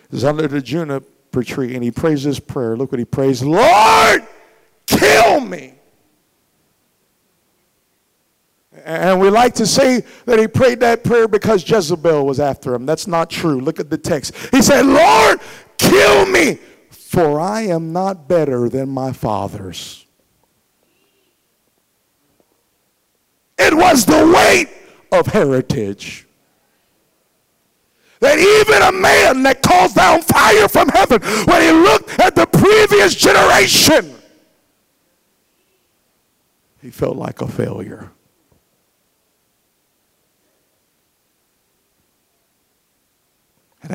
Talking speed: 110 wpm